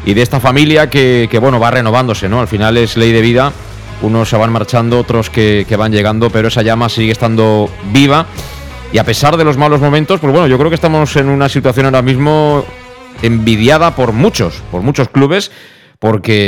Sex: male